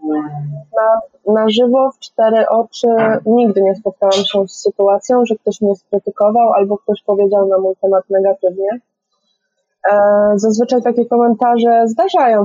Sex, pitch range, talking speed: female, 200-260 Hz, 135 wpm